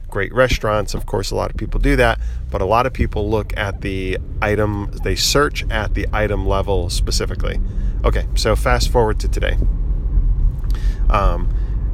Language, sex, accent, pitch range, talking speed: English, male, American, 95-115 Hz, 165 wpm